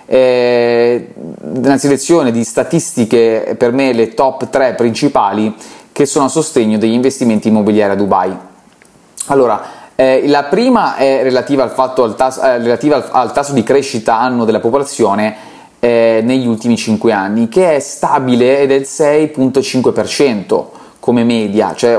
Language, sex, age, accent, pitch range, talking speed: Italian, male, 20-39, native, 110-130 Hz, 145 wpm